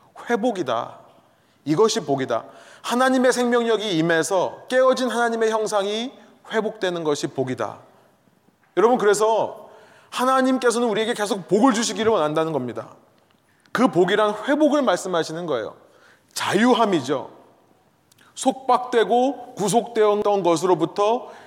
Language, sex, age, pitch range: Korean, male, 30-49, 195-245 Hz